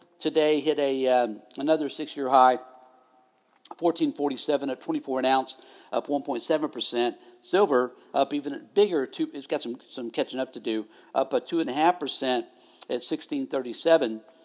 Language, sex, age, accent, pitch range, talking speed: English, male, 50-69, American, 135-180 Hz, 135 wpm